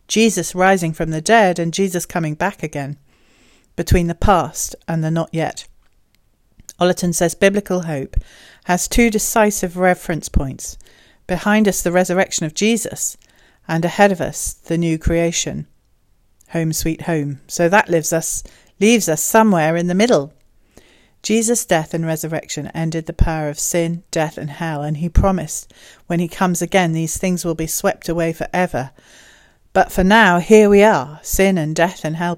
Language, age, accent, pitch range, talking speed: English, 40-59, British, 155-180 Hz, 165 wpm